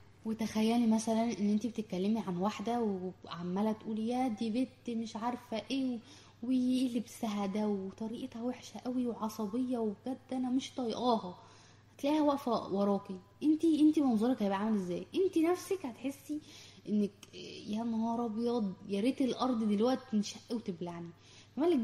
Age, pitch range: 20-39, 205-255 Hz